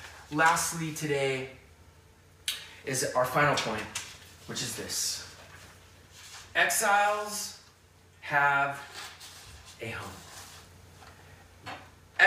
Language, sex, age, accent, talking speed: English, male, 30-49, American, 65 wpm